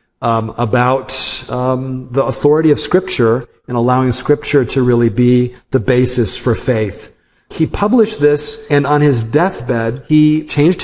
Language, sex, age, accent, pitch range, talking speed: English, male, 50-69, American, 105-130 Hz, 145 wpm